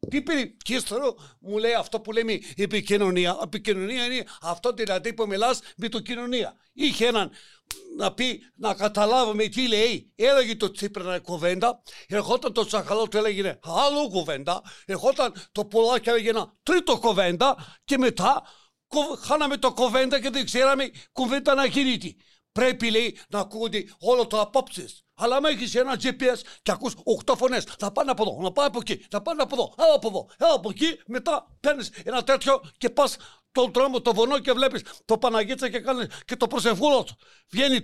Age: 60-79